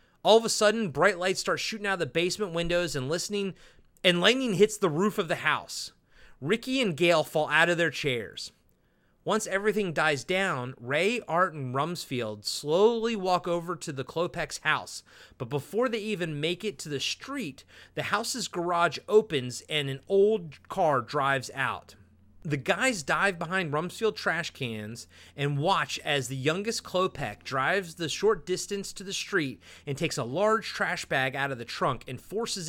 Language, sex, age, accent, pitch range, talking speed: English, male, 30-49, American, 135-195 Hz, 180 wpm